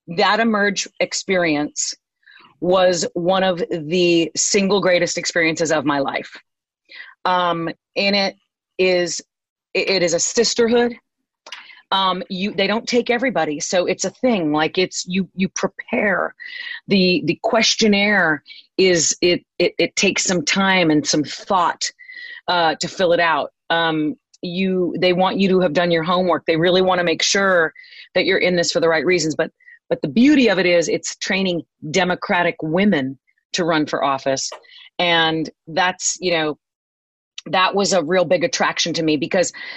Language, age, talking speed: English, 40-59, 160 wpm